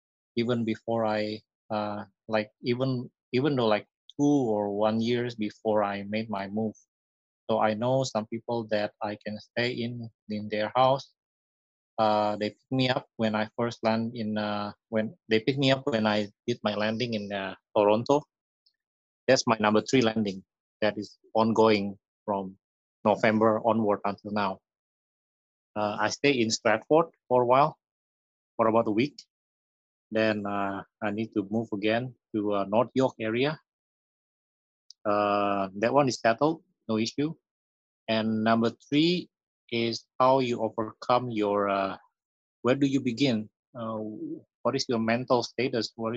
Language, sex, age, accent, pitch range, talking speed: English, male, 30-49, Indonesian, 105-120 Hz, 155 wpm